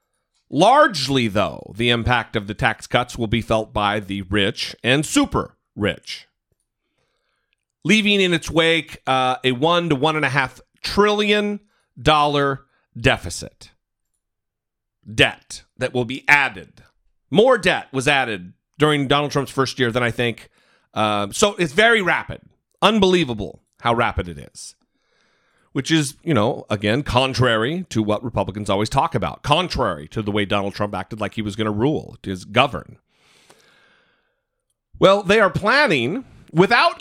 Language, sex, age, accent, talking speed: English, male, 40-59, American, 150 wpm